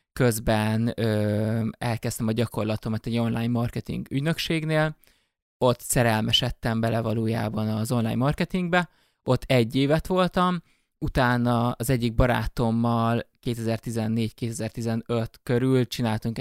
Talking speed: 100 wpm